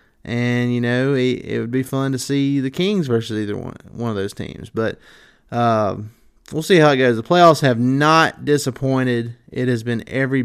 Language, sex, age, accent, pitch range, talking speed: English, male, 30-49, American, 110-135 Hz, 200 wpm